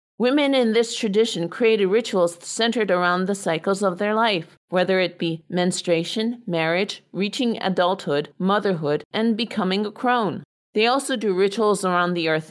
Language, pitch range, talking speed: English, 180-225 Hz, 155 wpm